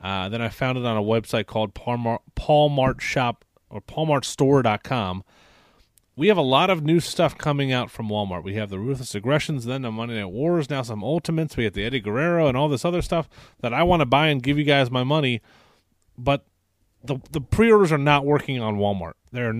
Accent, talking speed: American, 215 wpm